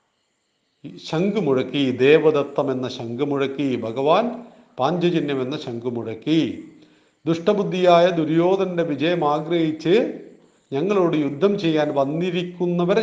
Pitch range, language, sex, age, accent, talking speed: 145-180 Hz, Malayalam, male, 50-69, native, 70 wpm